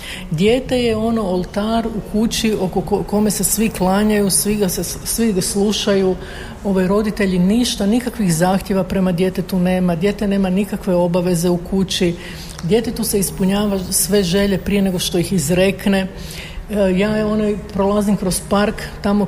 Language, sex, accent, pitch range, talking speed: Croatian, female, native, 185-210 Hz, 155 wpm